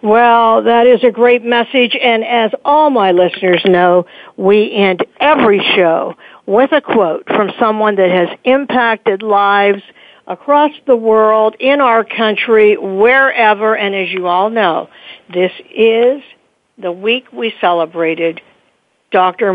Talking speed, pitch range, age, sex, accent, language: 135 wpm, 185-245 Hz, 60-79, female, American, English